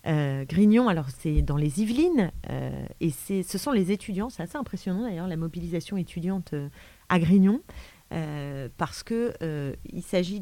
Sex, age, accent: female, 30-49, French